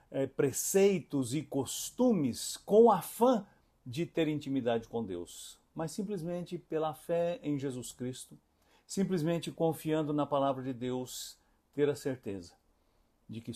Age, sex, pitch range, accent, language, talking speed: 60-79, male, 120-160 Hz, Brazilian, English, 130 wpm